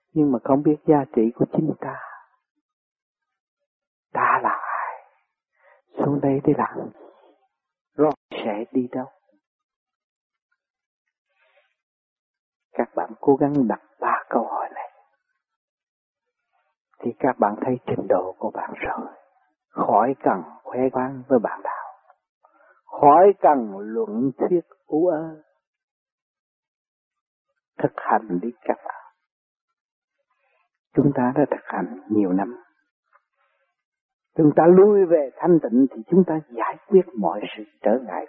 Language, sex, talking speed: Vietnamese, male, 125 wpm